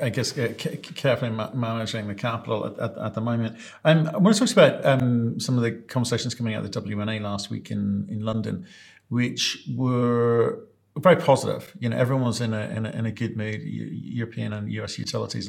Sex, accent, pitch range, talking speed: male, British, 105-120 Hz, 210 wpm